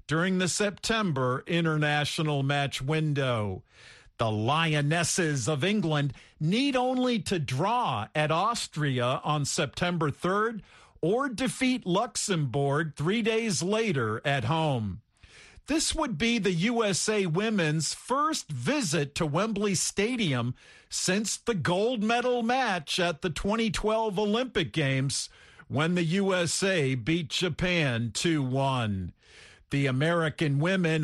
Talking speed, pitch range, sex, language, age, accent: 110 wpm, 150-215 Hz, male, English, 50-69, American